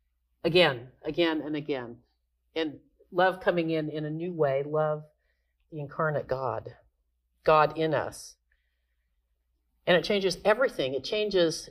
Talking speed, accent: 130 wpm, American